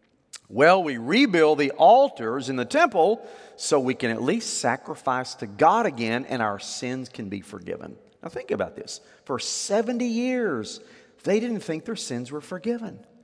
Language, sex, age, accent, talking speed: English, male, 40-59, American, 170 wpm